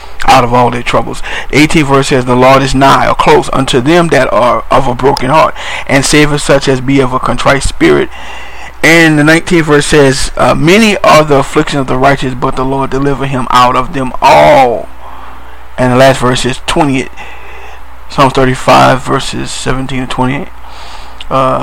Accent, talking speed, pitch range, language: American, 185 wpm, 130-145 Hz, English